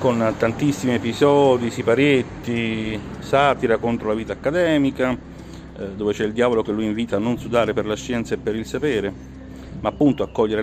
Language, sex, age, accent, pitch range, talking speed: Italian, male, 40-59, native, 100-120 Hz, 170 wpm